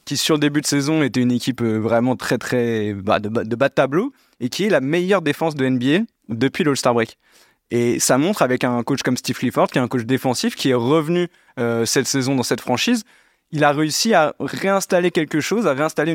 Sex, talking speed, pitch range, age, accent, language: male, 225 wpm, 125-150 Hz, 20-39, French, French